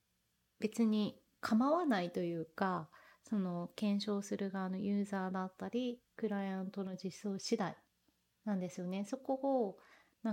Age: 30-49